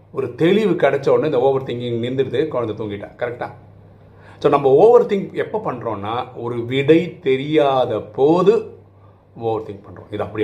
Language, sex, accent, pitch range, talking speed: Tamil, male, native, 105-160 Hz, 150 wpm